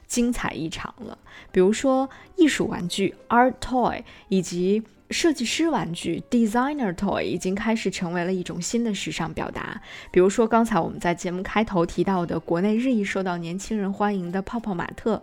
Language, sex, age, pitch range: Chinese, female, 20-39, 185-245 Hz